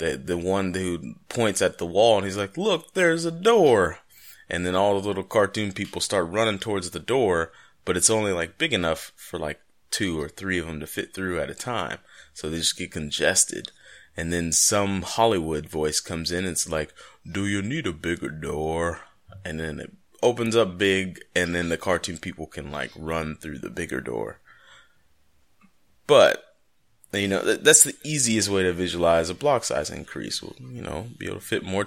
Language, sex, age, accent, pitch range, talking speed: English, male, 20-39, American, 85-105 Hz, 200 wpm